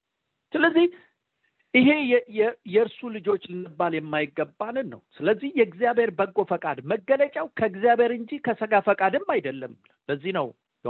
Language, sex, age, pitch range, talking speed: English, male, 50-69, 205-285 Hz, 110 wpm